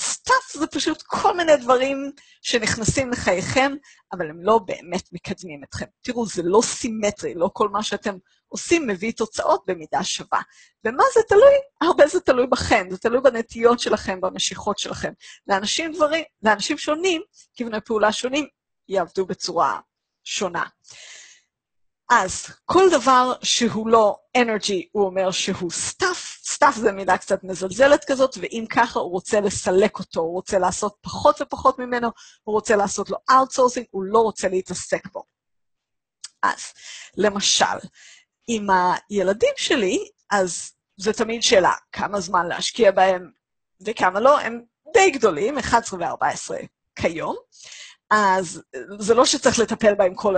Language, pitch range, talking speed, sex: Hebrew, 195-275 Hz, 135 wpm, female